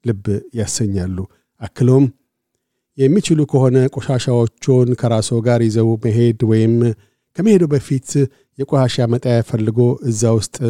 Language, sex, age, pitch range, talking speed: Amharic, male, 50-69, 115-130 Hz, 90 wpm